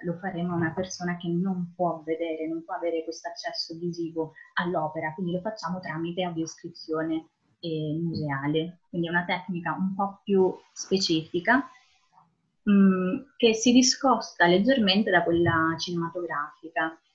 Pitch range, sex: 175-220 Hz, female